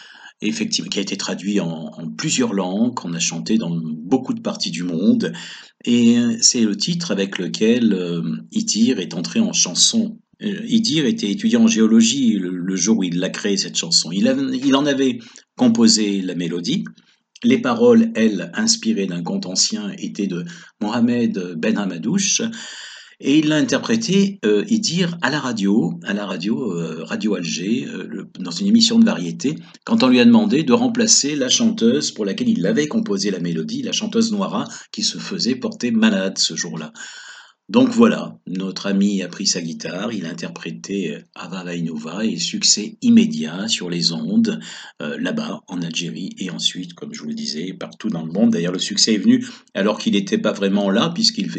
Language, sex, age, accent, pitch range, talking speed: French, male, 50-69, French, 140-230 Hz, 185 wpm